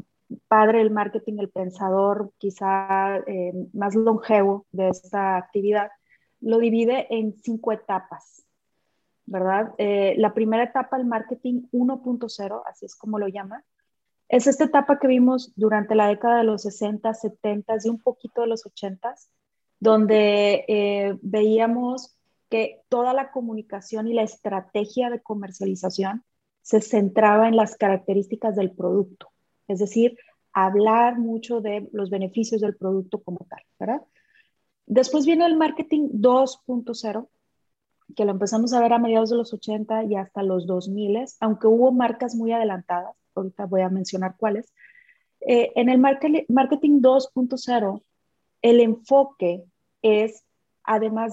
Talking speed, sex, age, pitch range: 135 wpm, female, 30-49, 200-240 Hz